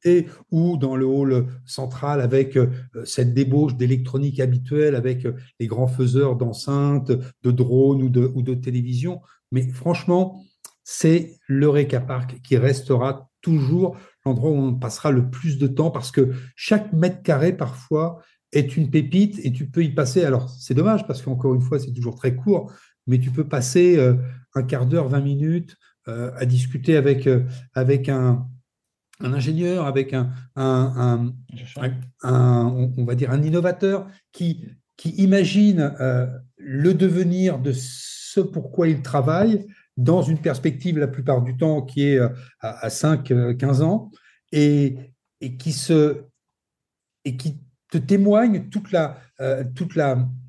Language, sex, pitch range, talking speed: French, male, 125-165 Hz, 150 wpm